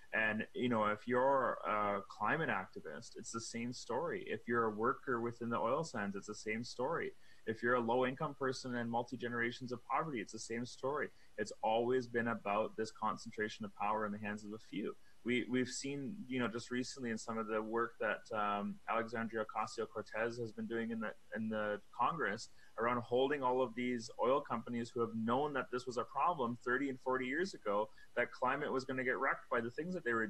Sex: male